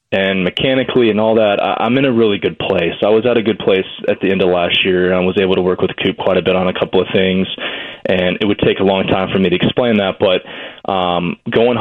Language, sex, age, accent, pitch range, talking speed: English, male, 20-39, American, 95-105 Hz, 275 wpm